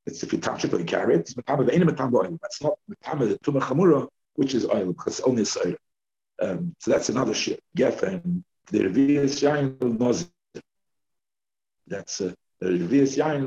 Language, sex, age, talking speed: English, male, 50-69, 180 wpm